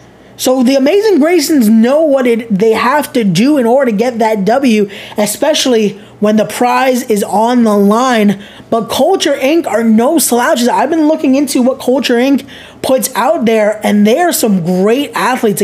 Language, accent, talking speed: English, American, 180 wpm